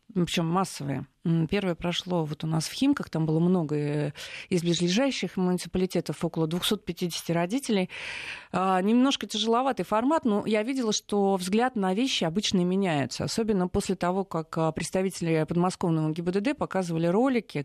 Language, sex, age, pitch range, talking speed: Russian, female, 30-49, 160-200 Hz, 135 wpm